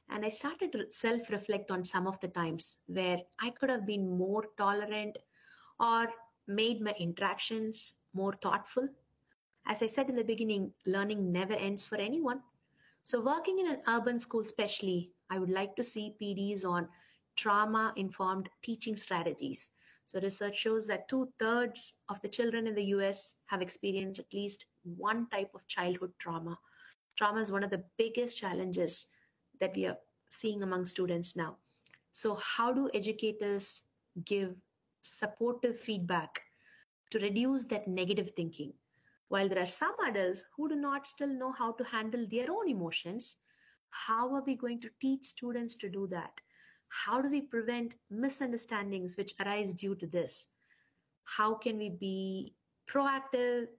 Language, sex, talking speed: English, female, 155 wpm